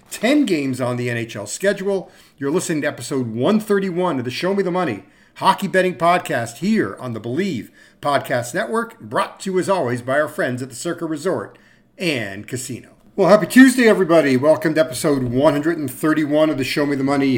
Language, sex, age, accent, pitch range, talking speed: English, male, 50-69, American, 125-170 Hz, 185 wpm